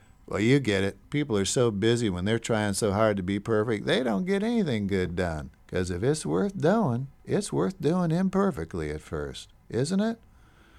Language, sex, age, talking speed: English, male, 50-69, 195 wpm